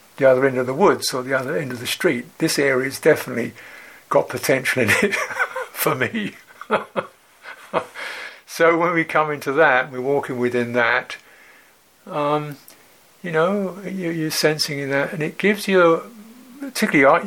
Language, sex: English, male